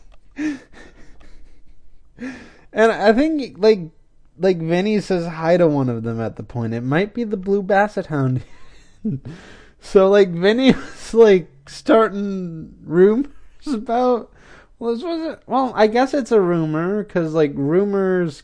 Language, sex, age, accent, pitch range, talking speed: English, male, 20-39, American, 140-230 Hz, 135 wpm